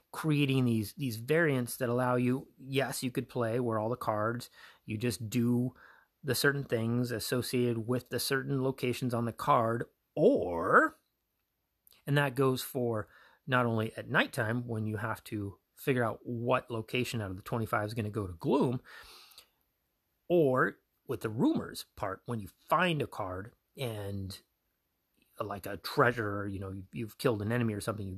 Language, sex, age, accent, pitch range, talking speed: English, male, 30-49, American, 110-130 Hz, 170 wpm